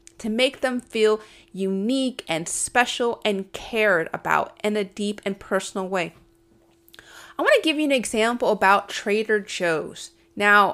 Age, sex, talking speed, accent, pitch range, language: 30-49, female, 145 wpm, American, 195-255 Hz, English